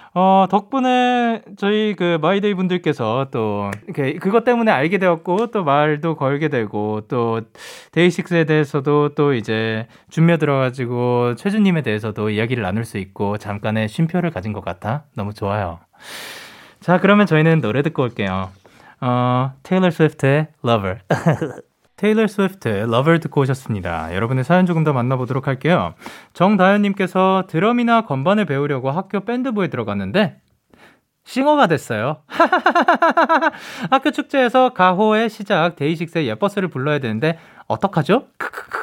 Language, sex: Korean, male